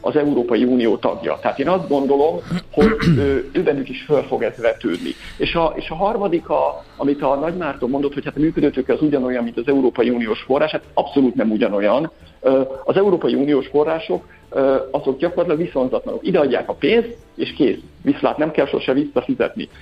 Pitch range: 140-205 Hz